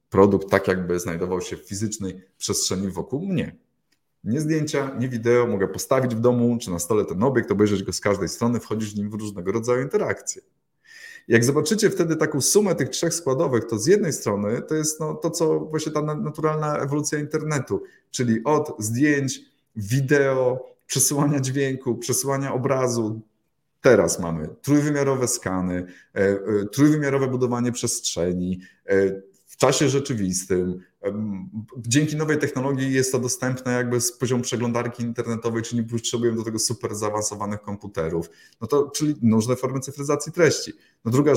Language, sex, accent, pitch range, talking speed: Polish, male, native, 105-140 Hz, 150 wpm